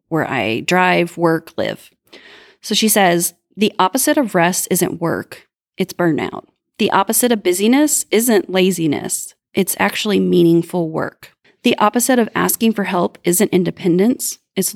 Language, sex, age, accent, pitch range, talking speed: English, female, 30-49, American, 180-230 Hz, 140 wpm